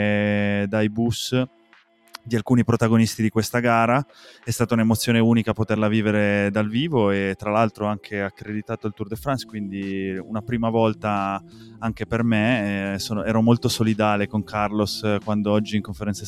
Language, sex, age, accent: Italian, male, 20-39, native